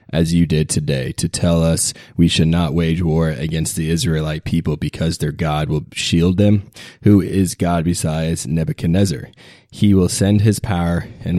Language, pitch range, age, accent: English, 80-95 Hz, 20-39, American